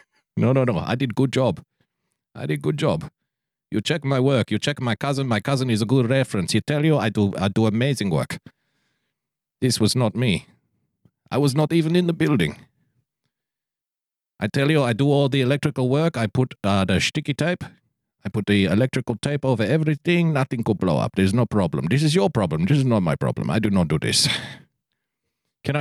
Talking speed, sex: 205 wpm, male